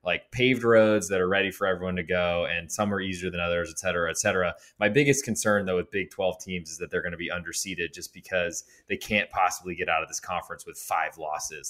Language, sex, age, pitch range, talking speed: English, male, 20-39, 90-110 Hz, 245 wpm